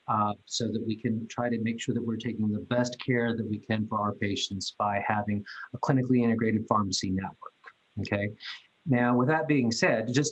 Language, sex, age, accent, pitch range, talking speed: English, male, 40-59, American, 110-135 Hz, 205 wpm